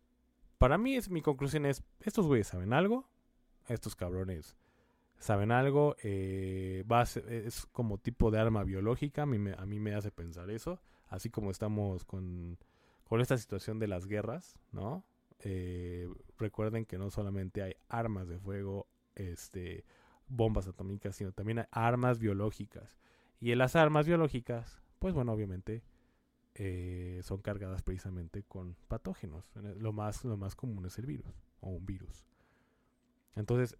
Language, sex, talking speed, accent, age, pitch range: Spanish, male, 155 wpm, Mexican, 20-39, 95-120 Hz